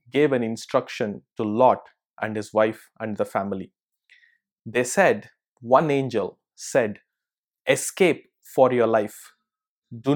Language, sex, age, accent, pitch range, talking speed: English, male, 20-39, Indian, 120-150 Hz, 125 wpm